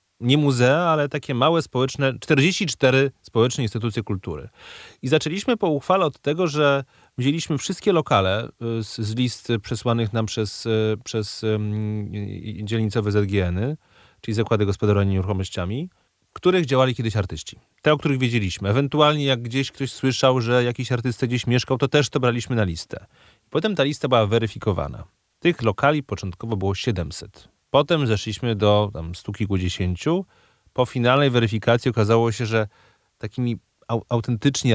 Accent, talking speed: native, 135 wpm